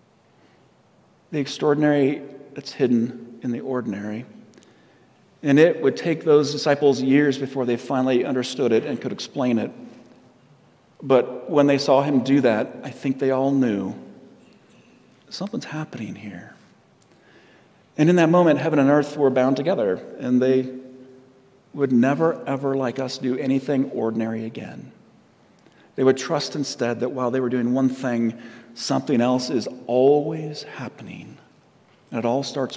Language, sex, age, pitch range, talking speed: English, male, 40-59, 125-145 Hz, 145 wpm